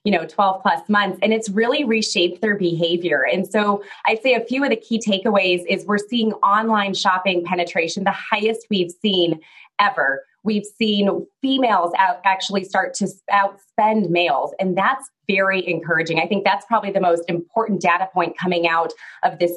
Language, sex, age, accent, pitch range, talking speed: English, female, 20-39, American, 175-205 Hz, 175 wpm